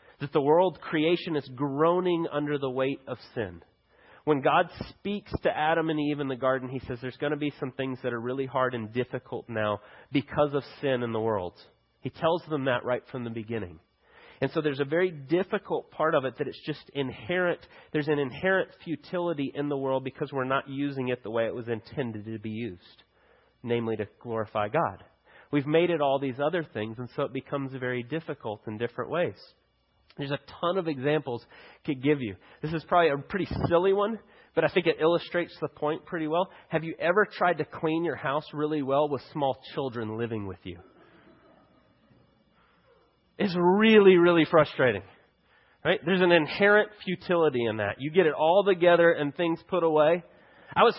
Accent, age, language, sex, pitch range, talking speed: American, 30-49, English, male, 130-170 Hz, 195 wpm